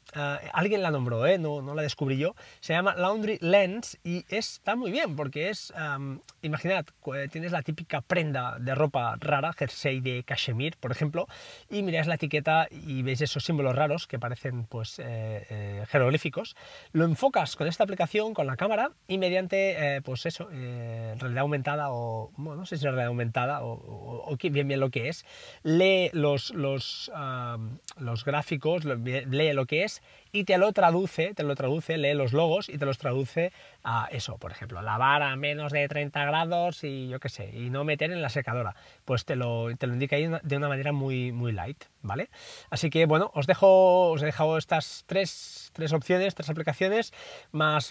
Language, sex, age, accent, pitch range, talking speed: Spanish, male, 20-39, Spanish, 135-170 Hz, 185 wpm